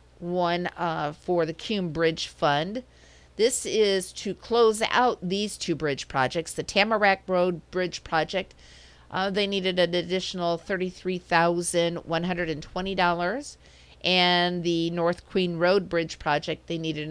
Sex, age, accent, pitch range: female, 50-69, American, 150-195 Hz